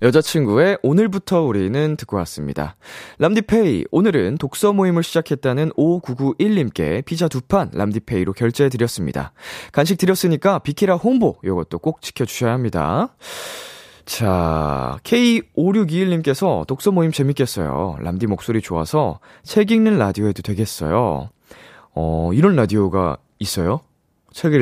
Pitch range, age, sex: 95-160 Hz, 20-39, male